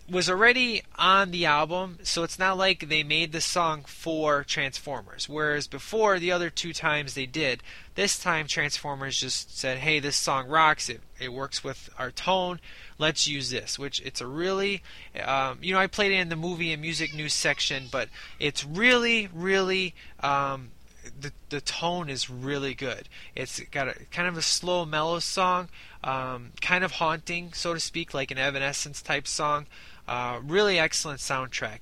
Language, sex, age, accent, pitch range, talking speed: English, male, 20-39, American, 140-175 Hz, 175 wpm